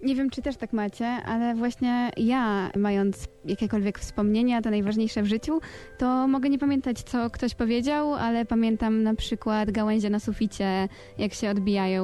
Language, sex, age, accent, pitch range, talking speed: Polish, female, 20-39, native, 205-245 Hz, 165 wpm